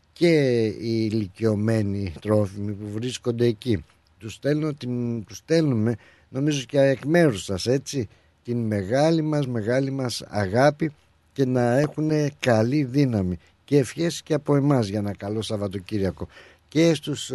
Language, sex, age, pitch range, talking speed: Greek, male, 60-79, 100-130 Hz, 130 wpm